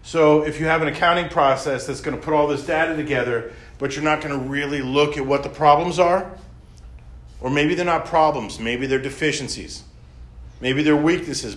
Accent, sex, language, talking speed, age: American, male, English, 195 wpm, 40-59